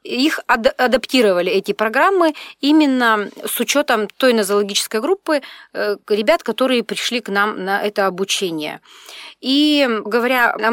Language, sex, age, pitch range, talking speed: Russian, female, 30-49, 195-255 Hz, 115 wpm